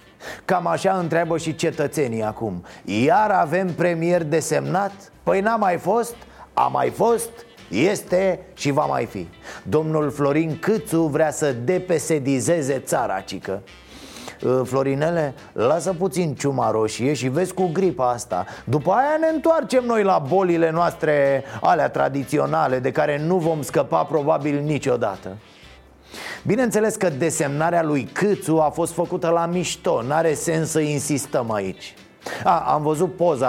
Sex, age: male, 30-49